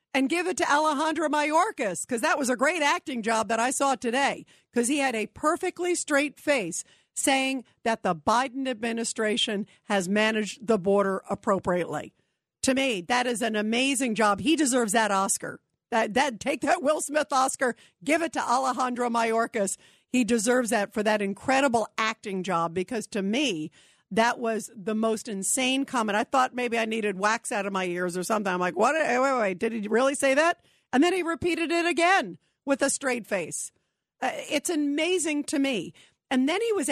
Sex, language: female, English